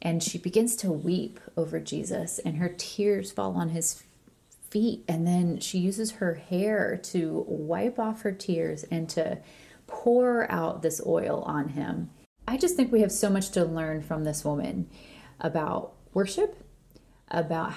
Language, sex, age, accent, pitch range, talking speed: English, female, 30-49, American, 165-210 Hz, 160 wpm